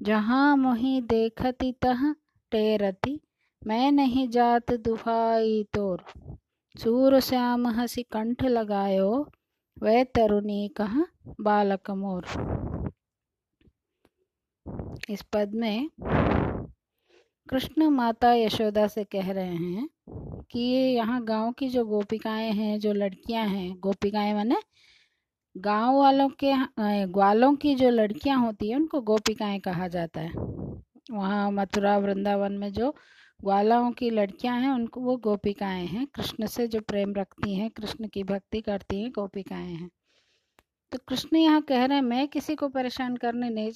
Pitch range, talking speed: 205-255 Hz, 130 wpm